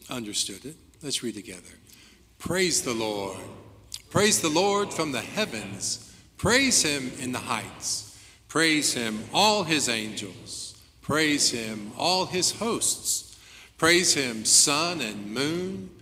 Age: 50-69